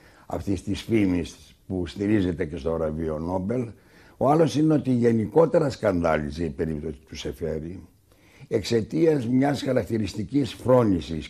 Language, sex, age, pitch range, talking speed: Greek, male, 60-79, 90-125 Hz, 120 wpm